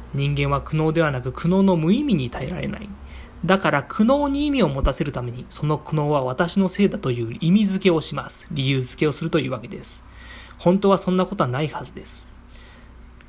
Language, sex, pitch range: Japanese, male, 130-180 Hz